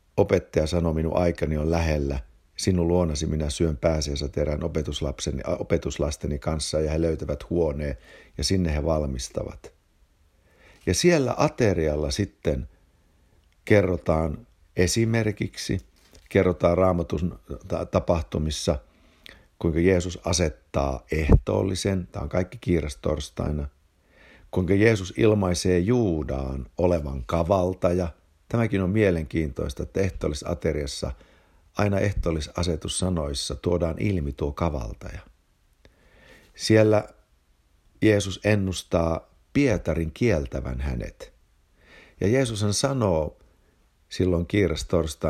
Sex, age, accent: male, 60-79, native